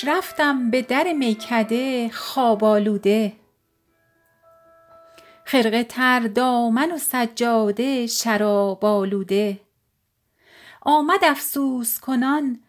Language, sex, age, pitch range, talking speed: Persian, female, 40-59, 210-270 Hz, 75 wpm